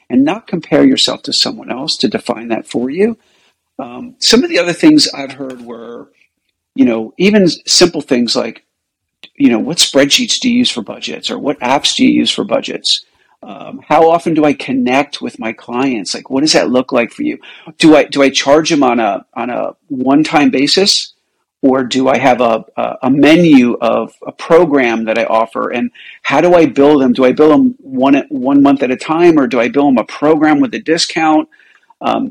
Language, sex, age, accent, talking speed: English, male, 50-69, American, 210 wpm